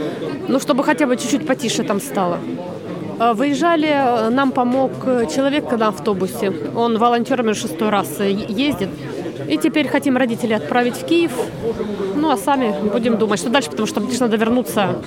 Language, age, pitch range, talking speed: Ukrainian, 30-49, 205-260 Hz, 150 wpm